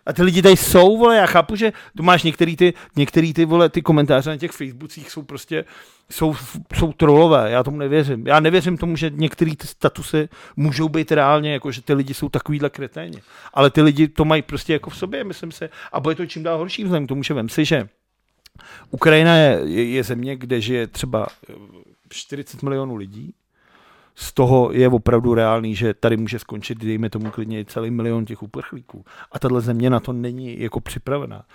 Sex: male